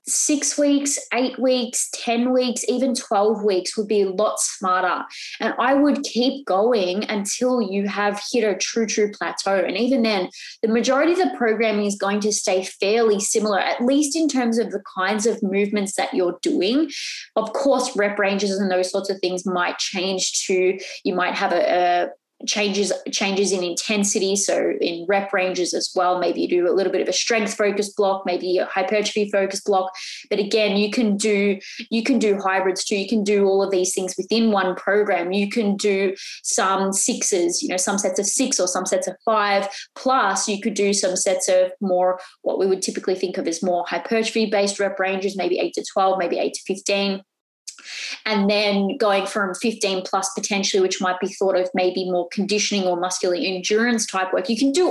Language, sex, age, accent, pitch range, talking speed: English, female, 20-39, Australian, 190-225 Hz, 200 wpm